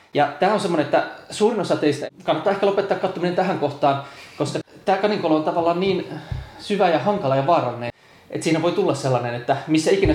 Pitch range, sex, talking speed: 135-185 Hz, male, 195 wpm